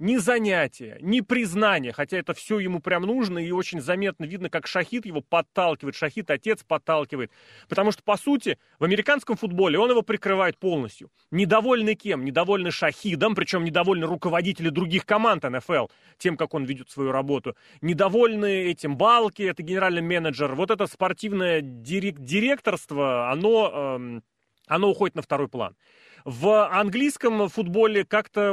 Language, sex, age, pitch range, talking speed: Russian, male, 30-49, 160-215 Hz, 145 wpm